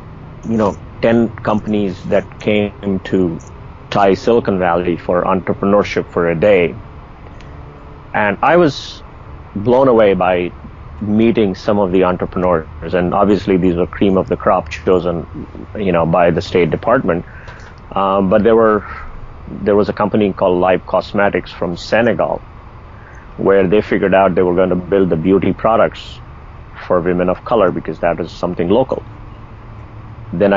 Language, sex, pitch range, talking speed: English, male, 90-115 Hz, 150 wpm